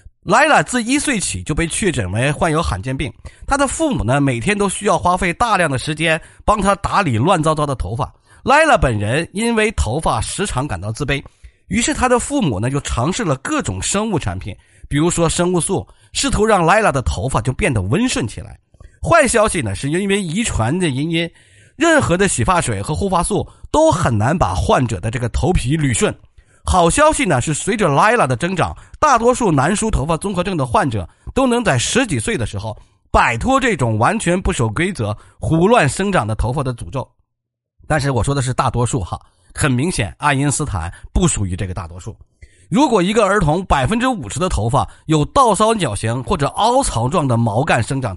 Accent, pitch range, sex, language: native, 110-185 Hz, male, Chinese